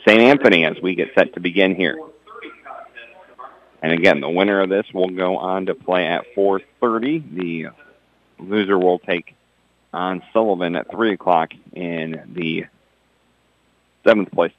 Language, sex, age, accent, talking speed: English, male, 40-59, American, 145 wpm